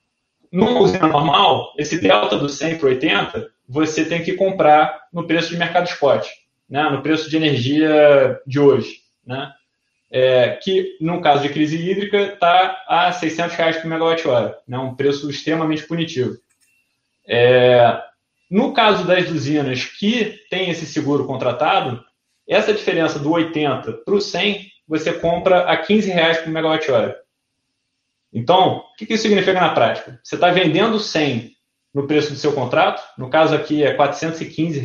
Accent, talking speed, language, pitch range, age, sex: Brazilian, 155 wpm, Portuguese, 145-185 Hz, 20-39, male